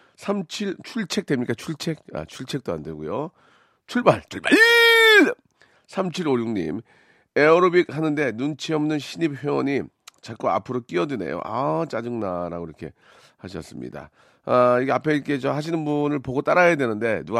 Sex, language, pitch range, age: male, Korean, 105-155 Hz, 40-59